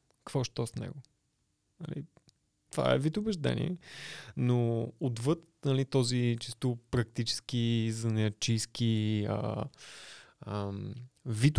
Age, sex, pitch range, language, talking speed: 20-39, male, 110-130 Hz, Bulgarian, 90 wpm